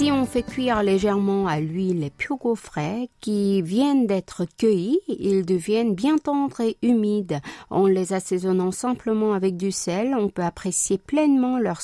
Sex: female